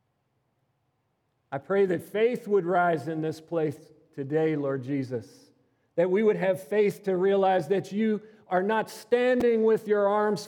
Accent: American